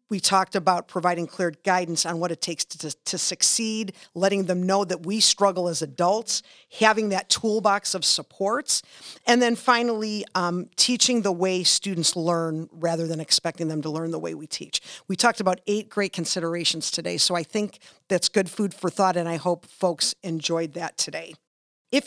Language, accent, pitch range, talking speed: English, American, 170-210 Hz, 185 wpm